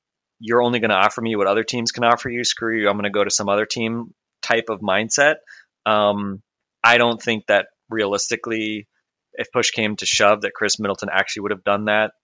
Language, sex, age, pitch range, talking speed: English, male, 30-49, 95-110 Hz, 215 wpm